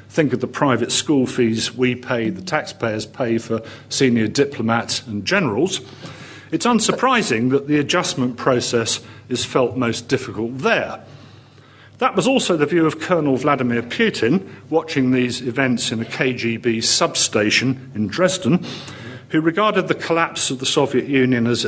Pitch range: 115-145 Hz